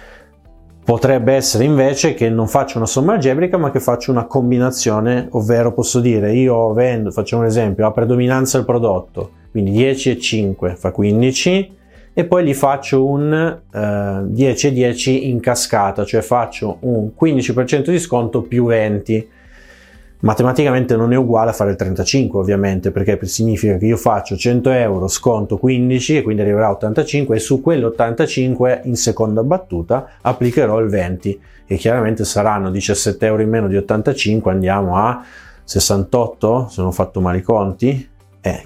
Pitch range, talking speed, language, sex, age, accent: 100-125 Hz, 160 wpm, Italian, male, 30-49, native